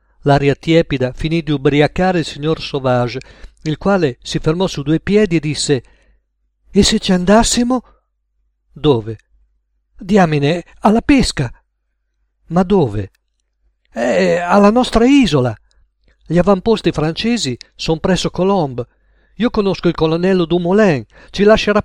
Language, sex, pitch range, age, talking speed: Italian, male, 120-170 Hz, 50-69, 120 wpm